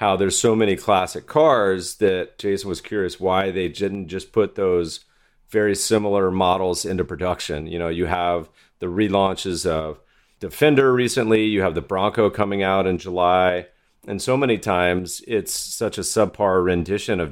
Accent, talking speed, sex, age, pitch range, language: American, 165 wpm, male, 40-59, 85-100 Hz, English